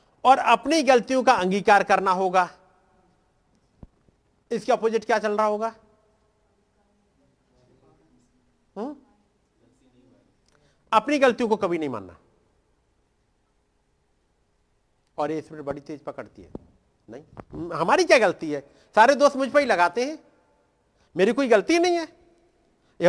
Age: 50-69